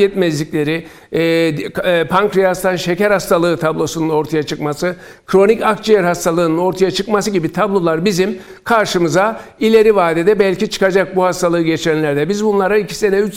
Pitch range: 165-195 Hz